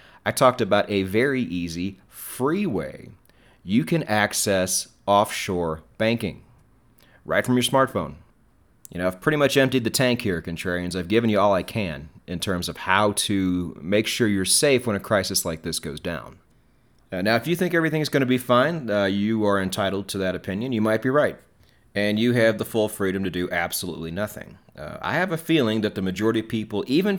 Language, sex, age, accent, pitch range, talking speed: English, male, 30-49, American, 95-120 Hz, 205 wpm